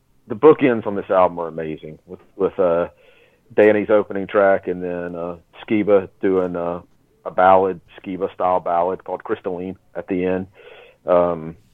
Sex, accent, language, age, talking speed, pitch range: male, American, English, 40-59, 150 wpm, 90-115 Hz